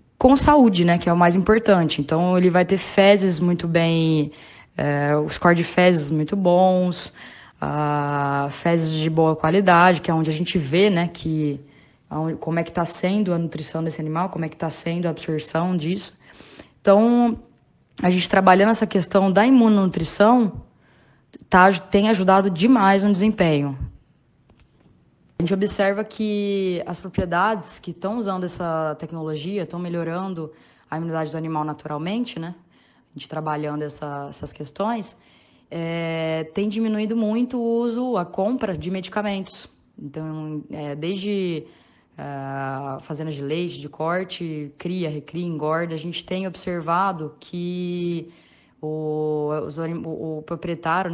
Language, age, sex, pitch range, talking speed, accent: Portuguese, 10-29, female, 155-190 Hz, 135 wpm, Brazilian